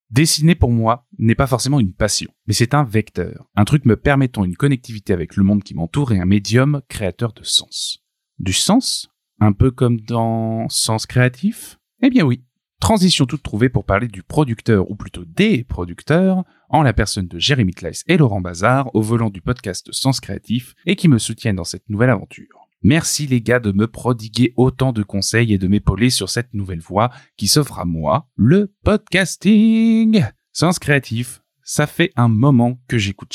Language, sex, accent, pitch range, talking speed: French, male, French, 105-150 Hz, 185 wpm